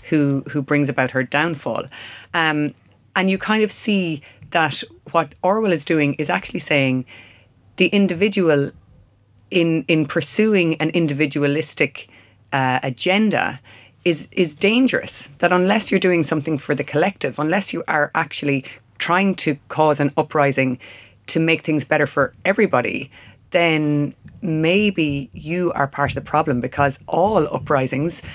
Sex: female